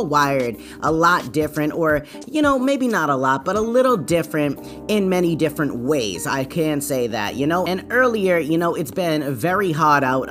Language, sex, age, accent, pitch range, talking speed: English, female, 30-49, American, 135-170 Hz, 200 wpm